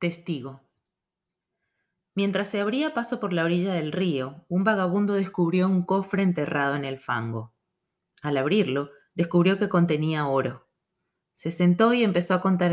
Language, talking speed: Spanish, 145 wpm